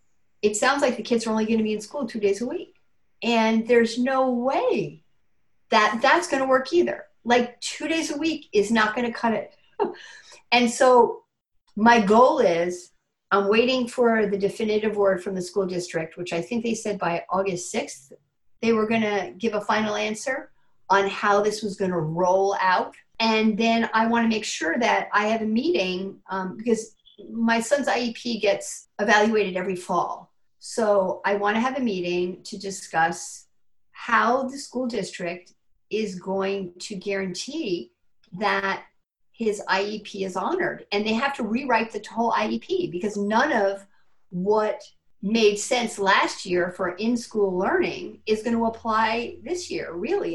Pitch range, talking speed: 195-240 Hz, 175 wpm